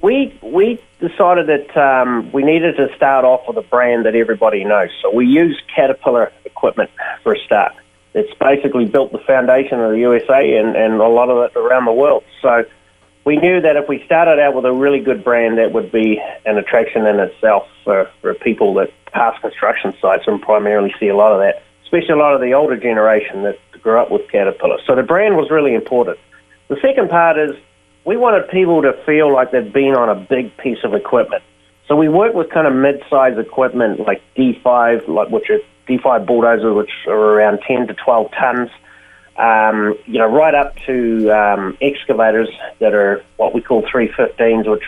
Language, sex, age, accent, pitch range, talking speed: English, male, 30-49, Australian, 110-150 Hz, 195 wpm